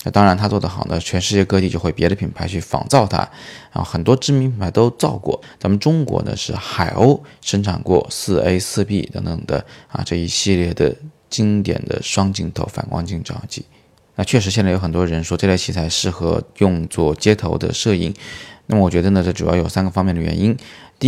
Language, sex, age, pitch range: Chinese, male, 20-39, 90-110 Hz